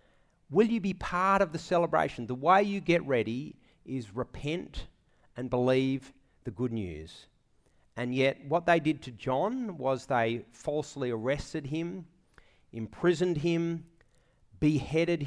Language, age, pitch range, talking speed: English, 40-59, 125-170 Hz, 135 wpm